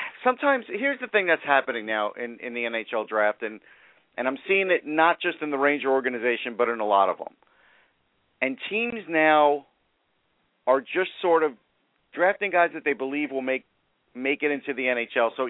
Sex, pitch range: male, 130-160 Hz